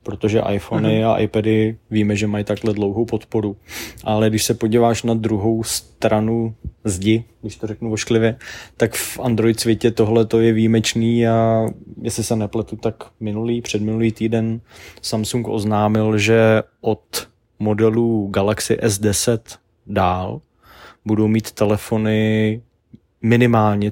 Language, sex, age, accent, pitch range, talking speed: Czech, male, 20-39, native, 105-115 Hz, 125 wpm